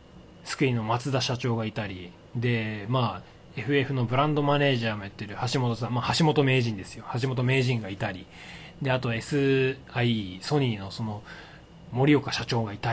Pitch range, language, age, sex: 115-165 Hz, Japanese, 20-39, male